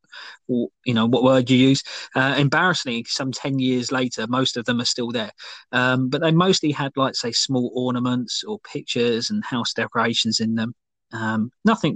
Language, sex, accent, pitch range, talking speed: English, male, British, 120-150 Hz, 180 wpm